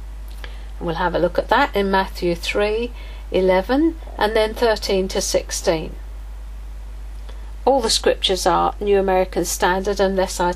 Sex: female